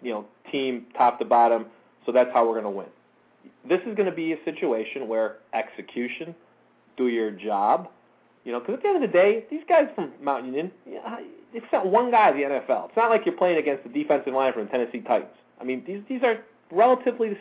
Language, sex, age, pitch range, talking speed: English, male, 30-49, 130-195 Hz, 225 wpm